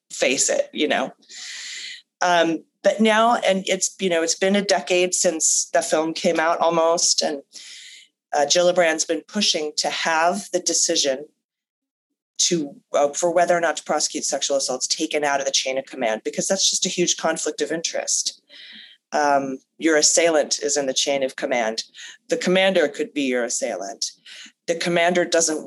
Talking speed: 170 wpm